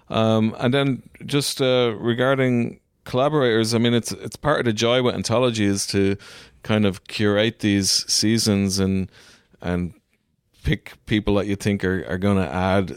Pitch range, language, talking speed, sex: 95-110 Hz, English, 165 wpm, male